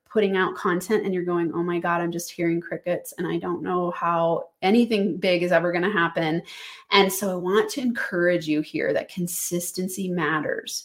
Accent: American